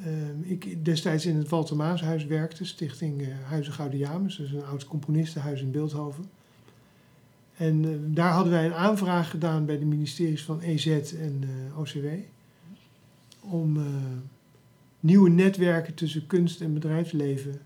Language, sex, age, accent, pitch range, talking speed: Dutch, male, 50-69, Dutch, 145-170 Hz, 145 wpm